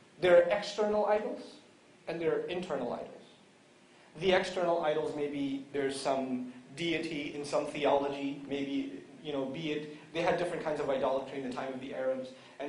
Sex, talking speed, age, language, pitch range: male, 175 wpm, 30-49, English, 140-185 Hz